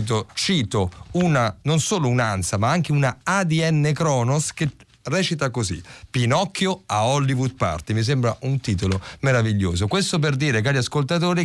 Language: Italian